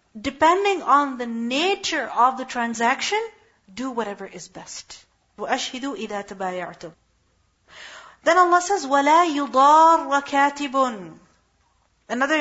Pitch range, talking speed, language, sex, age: 215-280 Hz, 75 wpm, English, female, 40-59